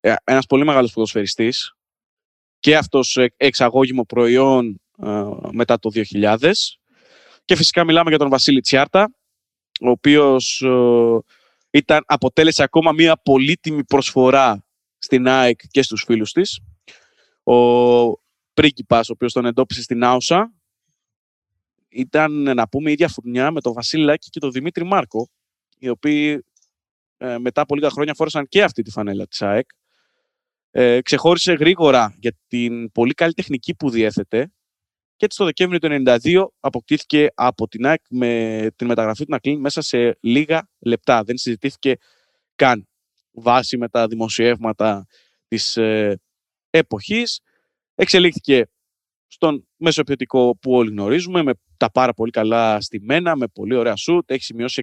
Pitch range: 115-150 Hz